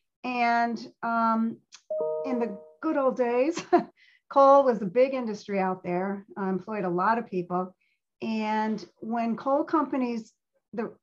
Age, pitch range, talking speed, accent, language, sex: 40-59, 195-250 Hz, 135 wpm, American, English, female